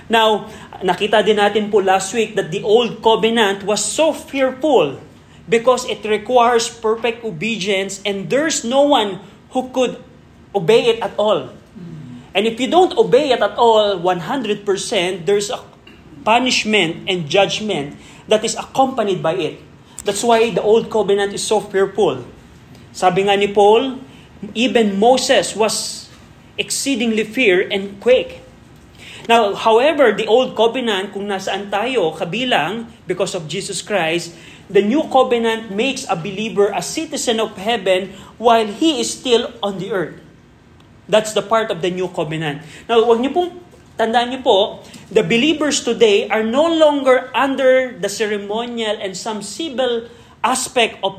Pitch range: 195-240 Hz